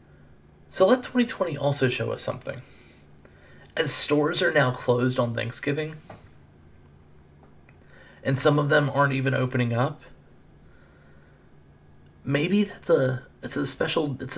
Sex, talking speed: male, 120 wpm